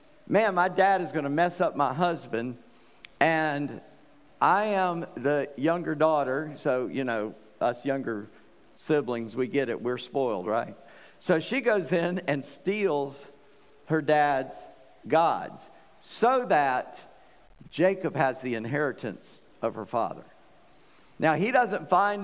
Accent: American